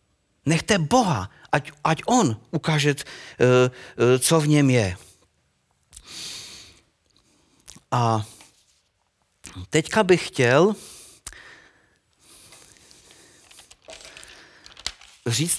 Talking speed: 60 wpm